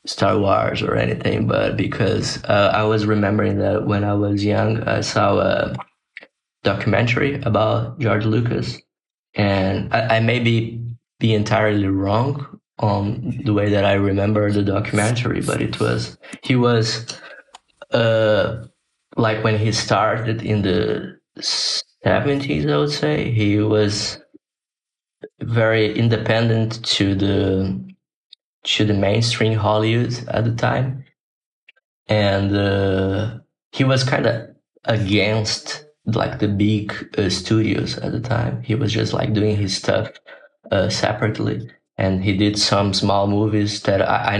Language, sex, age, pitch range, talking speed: English, male, 20-39, 100-115 Hz, 135 wpm